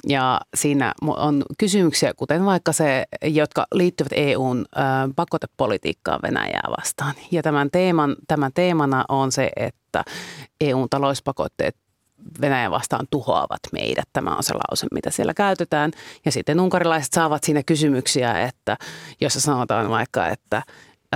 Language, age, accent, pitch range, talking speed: Finnish, 30-49, native, 140-175 Hz, 120 wpm